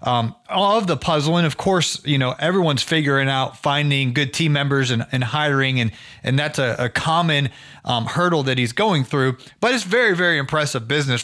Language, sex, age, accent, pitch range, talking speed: English, male, 30-49, American, 130-160 Hz, 190 wpm